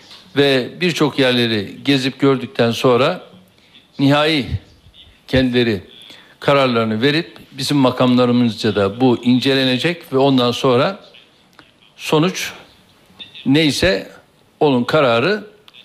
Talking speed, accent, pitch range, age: 85 wpm, native, 130-170 Hz, 60-79